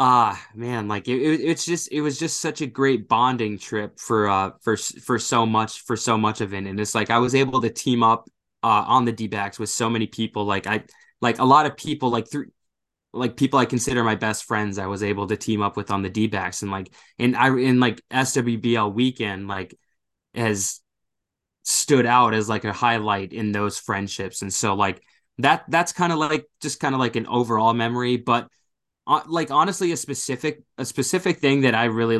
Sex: male